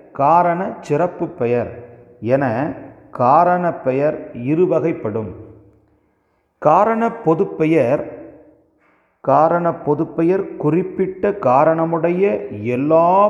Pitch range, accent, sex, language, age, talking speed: 120-175 Hz, Indian, male, English, 40-59, 75 wpm